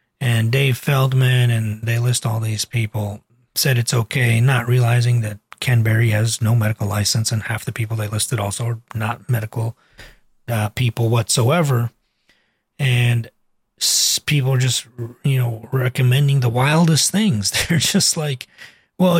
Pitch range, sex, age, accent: 115-135 Hz, male, 30-49, American